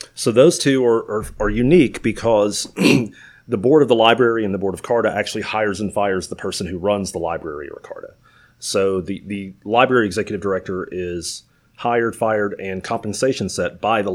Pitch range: 90-110 Hz